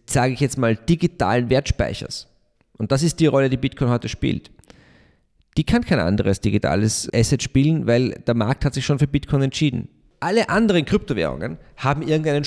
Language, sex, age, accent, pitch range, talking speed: German, male, 40-59, German, 120-160 Hz, 175 wpm